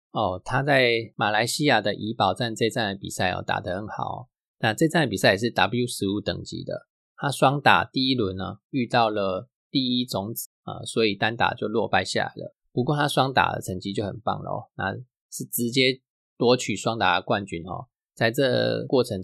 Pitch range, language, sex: 100-125 Hz, Chinese, male